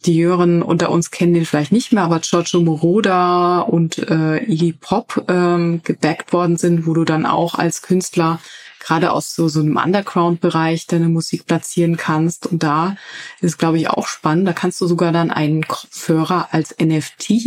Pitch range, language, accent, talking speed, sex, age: 160-190 Hz, German, German, 180 wpm, female, 20-39